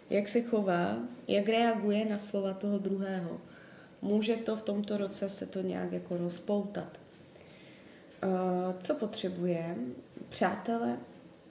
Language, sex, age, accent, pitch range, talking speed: Czech, female, 20-39, native, 185-220 Hz, 115 wpm